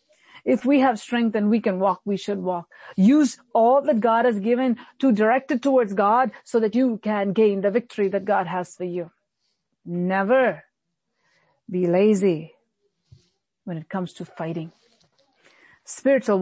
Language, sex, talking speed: English, female, 155 wpm